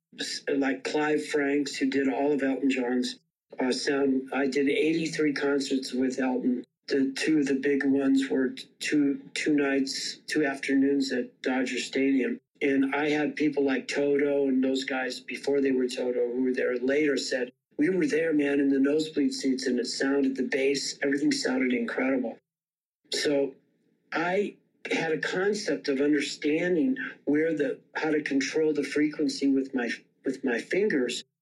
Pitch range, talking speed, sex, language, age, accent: 130-150 Hz, 160 wpm, male, English, 50-69, American